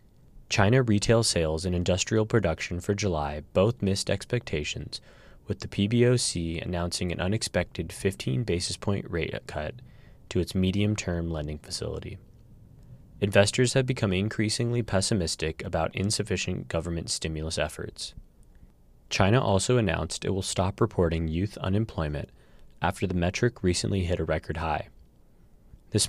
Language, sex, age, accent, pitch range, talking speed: English, male, 20-39, American, 85-110 Hz, 130 wpm